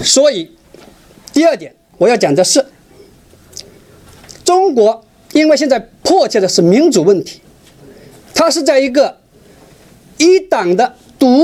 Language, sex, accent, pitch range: Chinese, male, native, 220-335 Hz